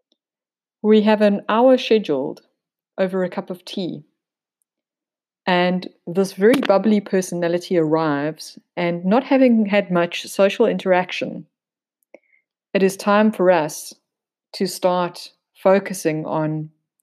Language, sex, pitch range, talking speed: English, female, 170-215 Hz, 115 wpm